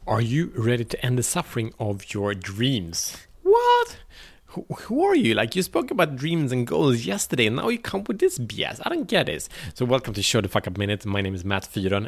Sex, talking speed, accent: male, 235 wpm, Norwegian